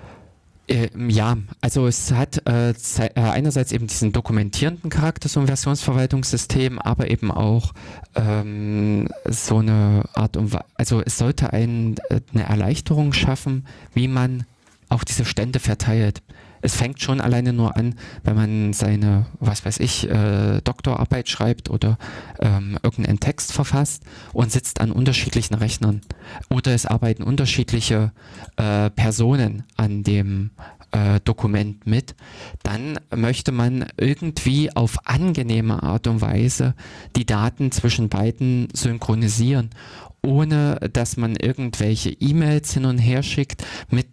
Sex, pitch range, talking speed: male, 105-125 Hz, 125 wpm